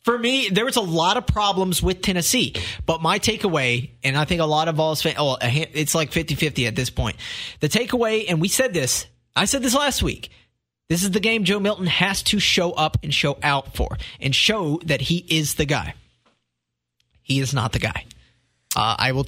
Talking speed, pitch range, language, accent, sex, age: 215 wpm, 130-175 Hz, English, American, male, 30-49